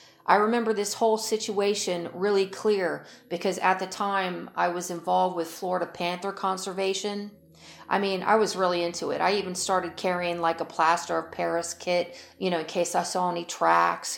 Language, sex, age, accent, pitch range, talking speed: English, female, 40-59, American, 170-200 Hz, 180 wpm